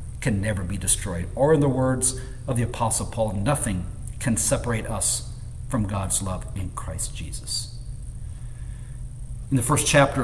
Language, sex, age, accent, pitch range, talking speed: English, male, 50-69, American, 115-145 Hz, 150 wpm